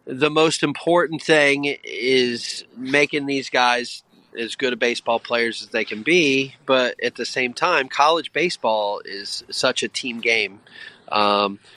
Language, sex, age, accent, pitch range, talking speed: English, male, 30-49, American, 110-130 Hz, 155 wpm